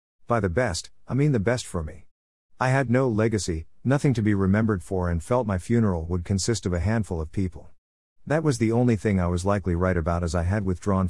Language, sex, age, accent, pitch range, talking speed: English, male, 50-69, American, 85-115 Hz, 230 wpm